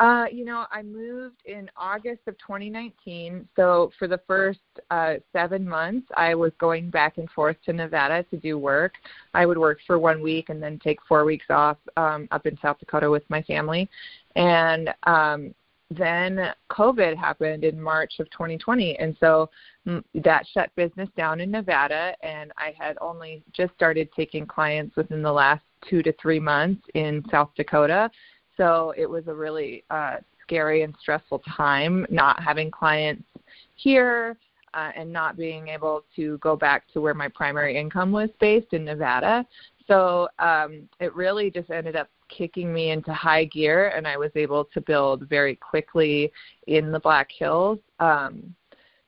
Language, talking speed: English, 170 wpm